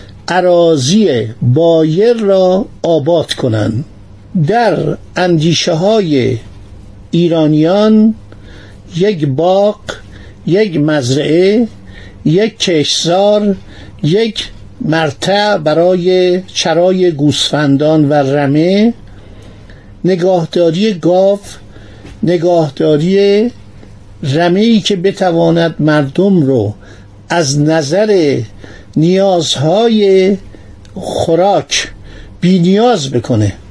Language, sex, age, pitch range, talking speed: Persian, male, 50-69, 115-185 Hz, 65 wpm